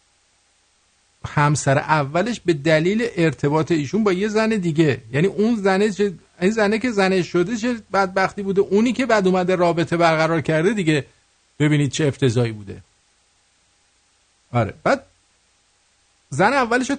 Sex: male